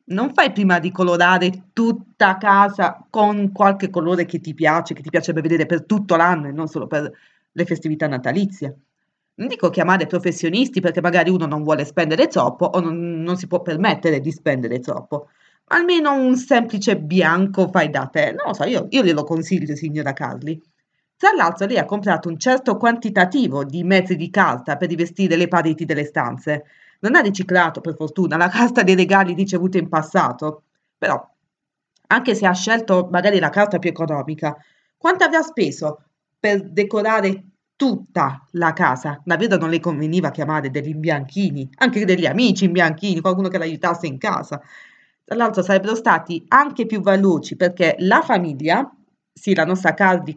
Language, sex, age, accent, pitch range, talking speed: Italian, female, 30-49, native, 160-200 Hz, 170 wpm